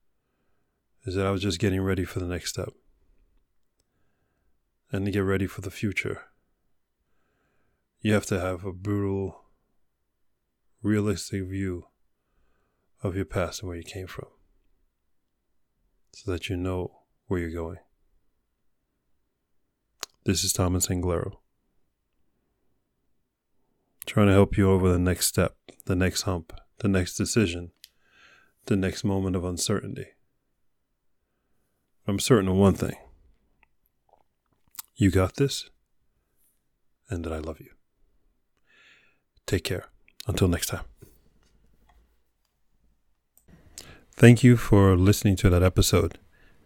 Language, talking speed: English, 115 wpm